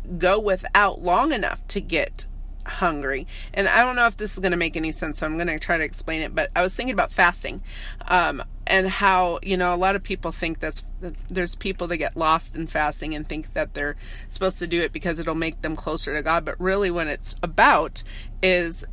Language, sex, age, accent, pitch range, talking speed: English, female, 30-49, American, 165-195 Hz, 230 wpm